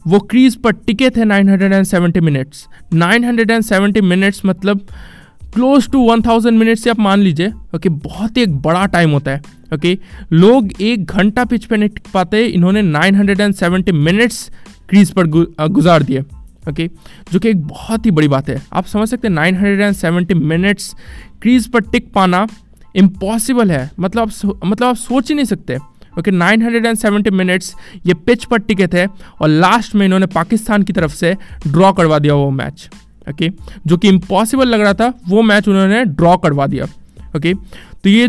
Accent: native